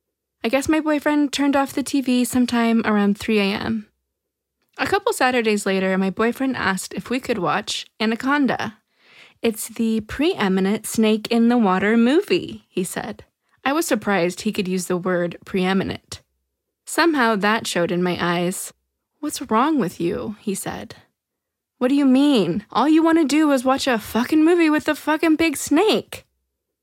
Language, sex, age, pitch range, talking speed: English, female, 20-39, 200-255 Hz, 165 wpm